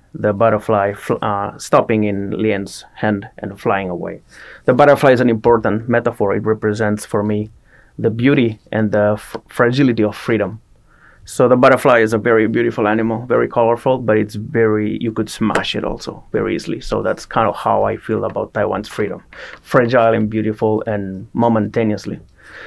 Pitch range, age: 105-120 Hz, 30-49